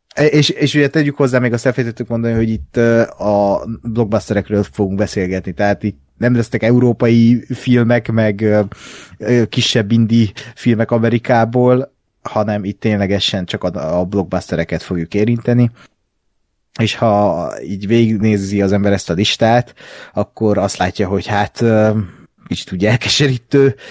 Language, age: Hungarian, 30-49